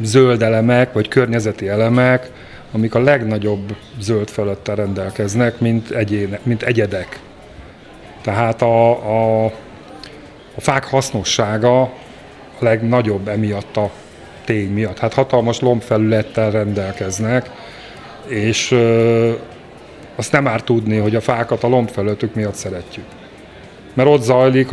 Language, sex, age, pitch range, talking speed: Hungarian, male, 30-49, 110-125 Hz, 115 wpm